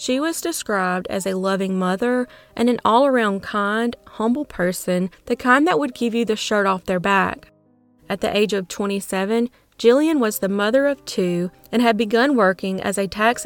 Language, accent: English, American